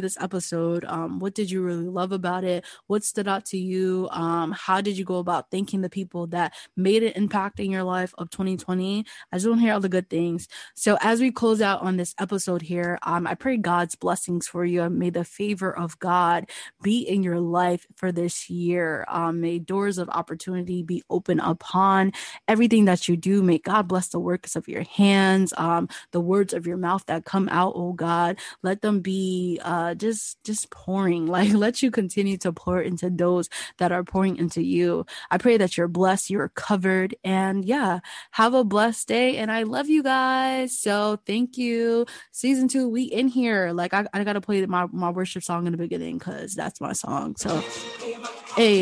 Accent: American